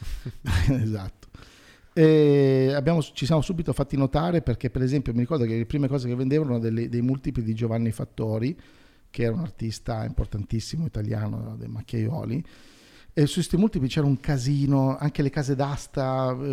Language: Italian